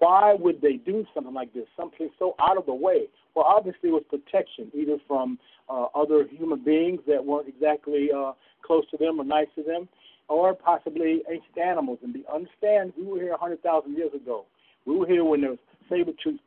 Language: English